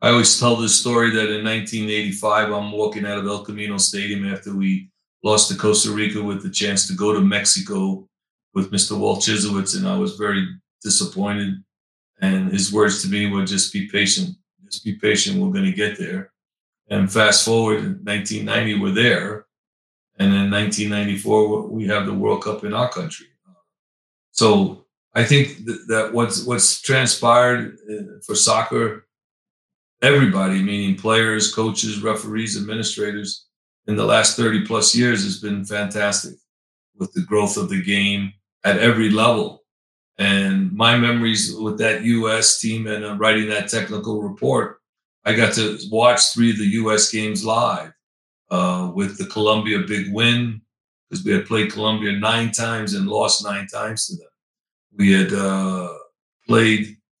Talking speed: 155 wpm